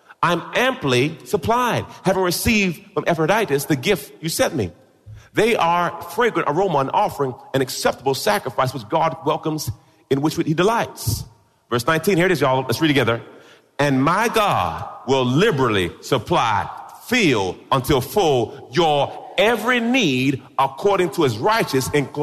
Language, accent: English, American